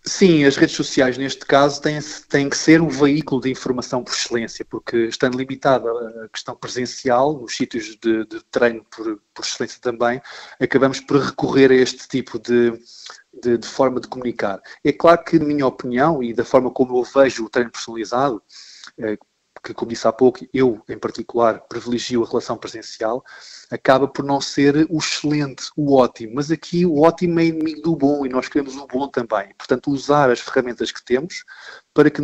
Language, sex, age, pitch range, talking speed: Portuguese, male, 20-39, 125-150 Hz, 190 wpm